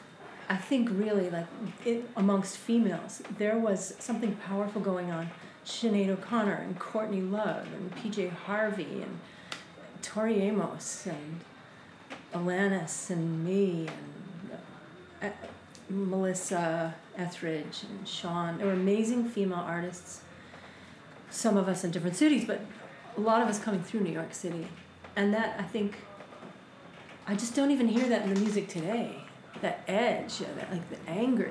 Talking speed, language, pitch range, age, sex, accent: 145 wpm, English, 180-215 Hz, 30-49, female, American